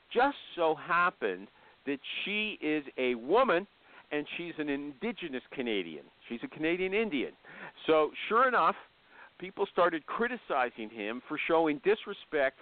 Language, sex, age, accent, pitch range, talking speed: English, male, 50-69, American, 170-285 Hz, 130 wpm